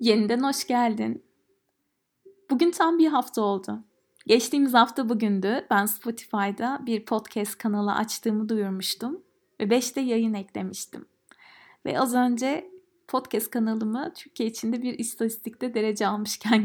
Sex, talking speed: female, 120 wpm